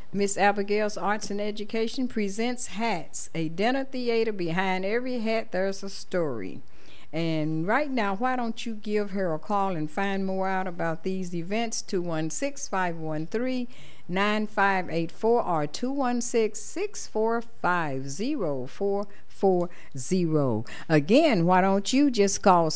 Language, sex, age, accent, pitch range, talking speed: English, female, 60-79, American, 170-220 Hz, 155 wpm